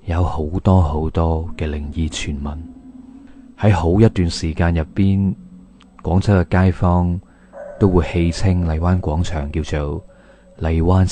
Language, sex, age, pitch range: Chinese, male, 20-39, 80-100 Hz